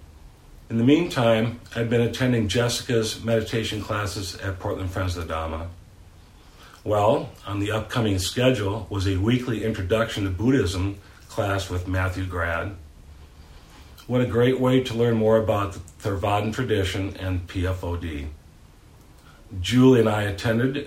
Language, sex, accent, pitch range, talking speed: English, male, American, 90-115 Hz, 140 wpm